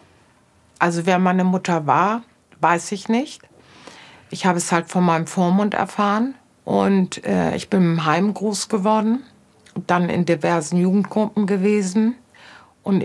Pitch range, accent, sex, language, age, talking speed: 150-190 Hz, German, female, German, 50-69, 135 wpm